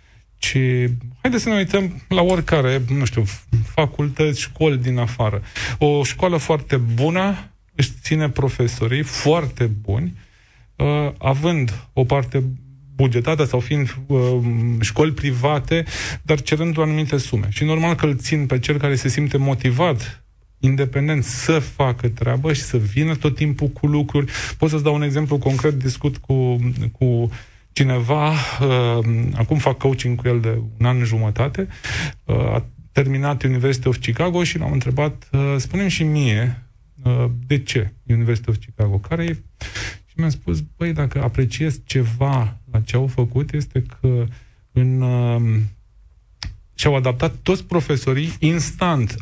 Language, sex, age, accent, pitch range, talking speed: Romanian, male, 30-49, native, 115-145 Hz, 145 wpm